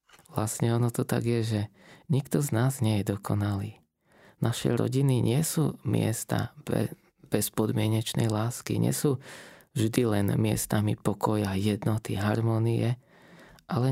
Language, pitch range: Slovak, 110-135 Hz